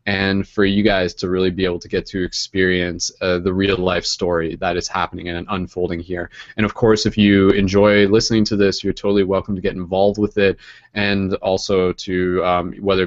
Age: 20-39